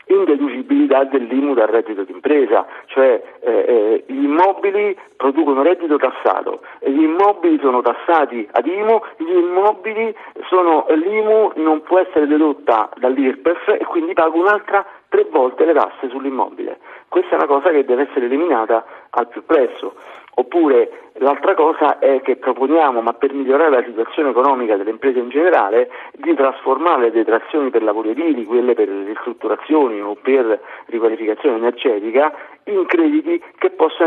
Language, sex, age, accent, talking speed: Italian, male, 50-69, native, 145 wpm